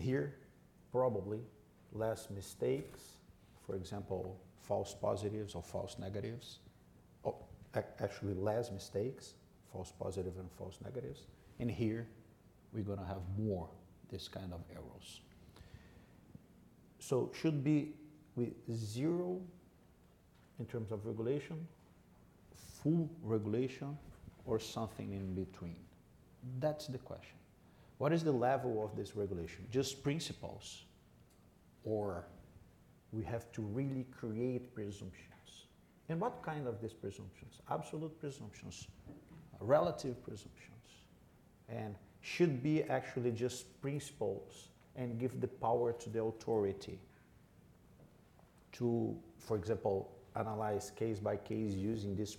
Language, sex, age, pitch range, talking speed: English, male, 50-69, 95-125 Hz, 110 wpm